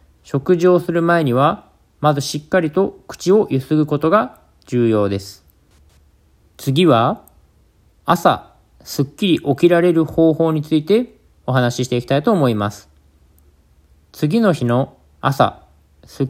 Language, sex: Japanese, male